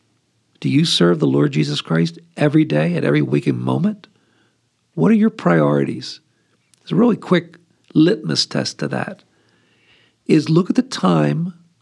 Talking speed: 150 wpm